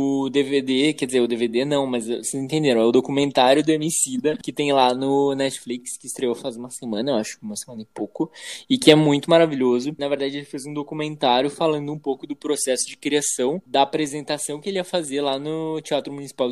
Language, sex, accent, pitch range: Portuguese, male, Brazilian, 130-155 Hz